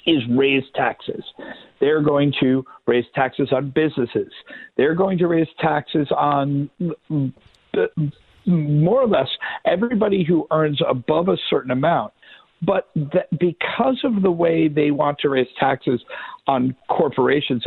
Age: 50-69